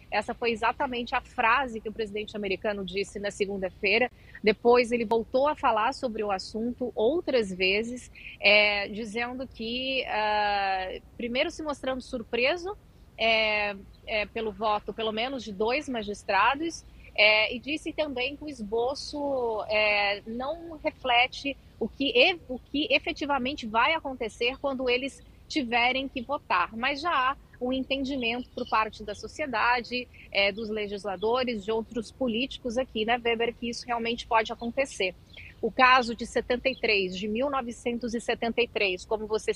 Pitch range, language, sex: 215-260 Hz, Portuguese, female